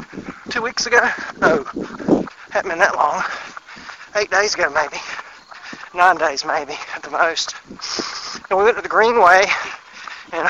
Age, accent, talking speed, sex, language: 40-59, American, 135 wpm, male, English